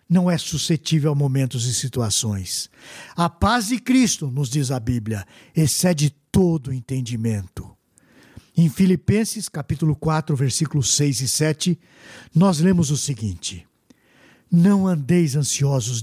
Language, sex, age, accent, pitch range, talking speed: Portuguese, male, 60-79, Brazilian, 130-200 Hz, 125 wpm